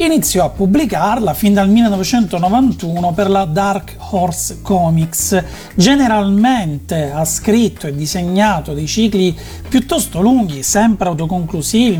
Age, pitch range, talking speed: 40-59, 170-225 Hz, 110 wpm